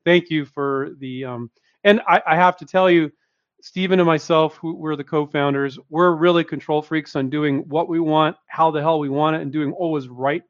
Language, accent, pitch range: English, American, 130-175 Hz